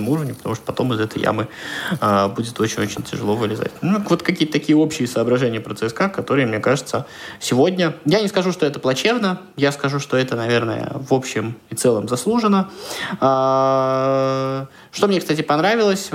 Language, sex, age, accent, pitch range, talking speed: Russian, male, 20-39, native, 110-140 Hz, 160 wpm